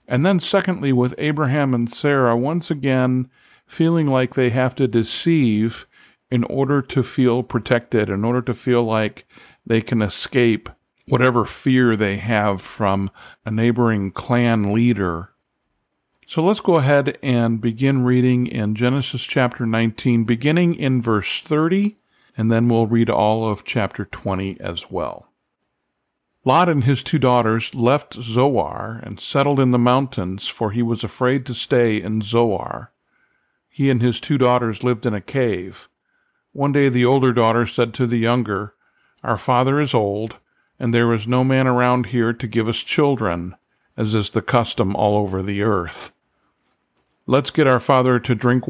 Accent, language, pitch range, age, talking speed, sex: American, English, 110-130 Hz, 50-69, 160 wpm, male